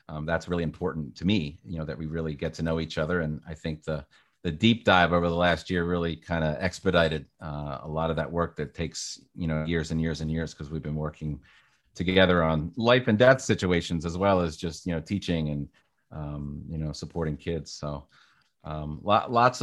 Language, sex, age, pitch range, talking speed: English, male, 30-49, 80-95 Hz, 225 wpm